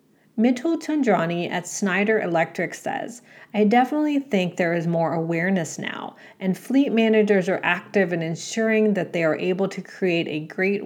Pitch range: 170-220 Hz